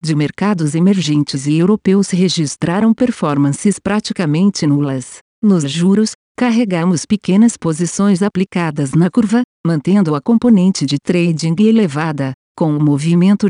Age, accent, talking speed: 50-69, Brazilian, 115 wpm